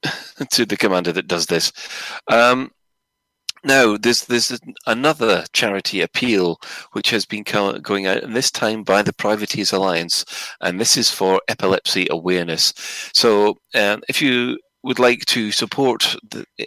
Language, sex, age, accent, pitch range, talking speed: English, male, 30-49, British, 90-120 Hz, 150 wpm